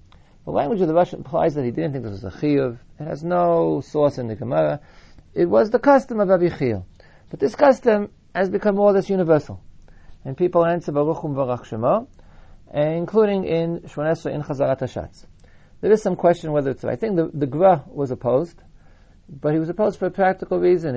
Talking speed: 200 wpm